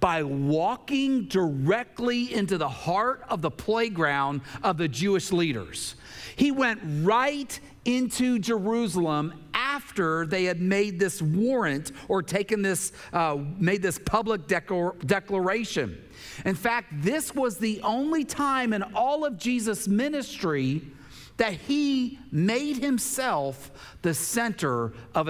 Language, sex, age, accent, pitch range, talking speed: English, male, 50-69, American, 155-230 Hz, 125 wpm